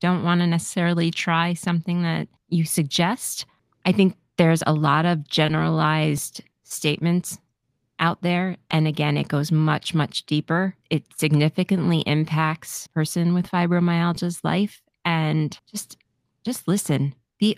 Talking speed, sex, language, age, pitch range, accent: 130 wpm, female, English, 30-49, 150-180 Hz, American